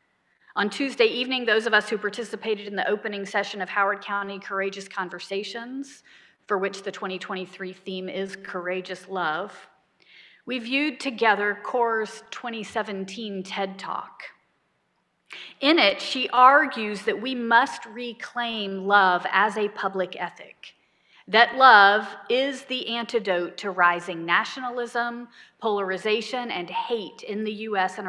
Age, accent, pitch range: 40-59, American, 190-250 Hz